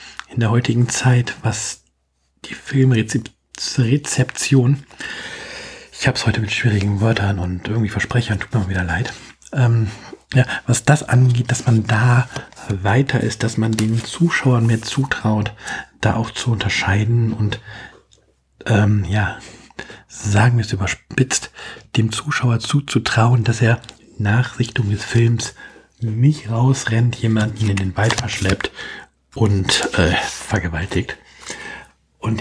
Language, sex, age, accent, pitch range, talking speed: German, male, 40-59, German, 105-125 Hz, 130 wpm